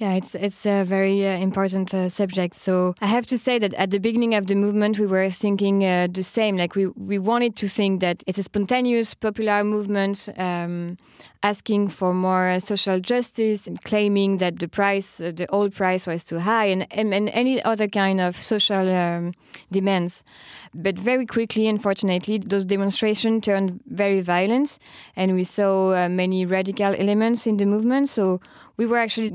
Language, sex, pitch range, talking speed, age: English, female, 185-220 Hz, 185 wpm, 20-39